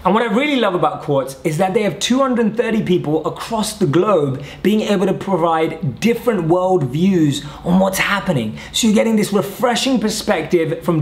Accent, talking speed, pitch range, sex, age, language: British, 180 wpm, 150-190 Hz, male, 20-39, English